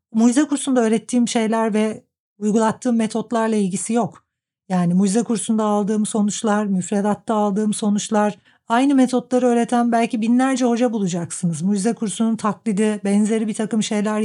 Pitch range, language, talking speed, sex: 190-225 Hz, Turkish, 130 wpm, female